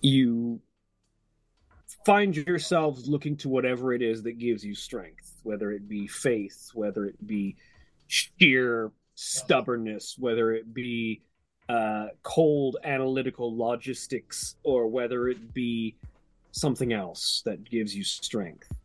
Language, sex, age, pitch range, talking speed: English, male, 30-49, 115-135 Hz, 120 wpm